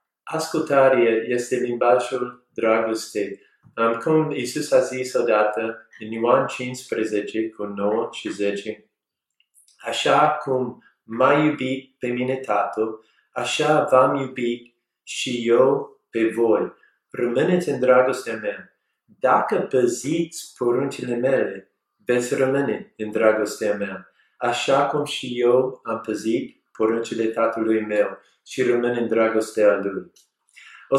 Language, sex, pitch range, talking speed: Romanian, male, 115-150 Hz, 115 wpm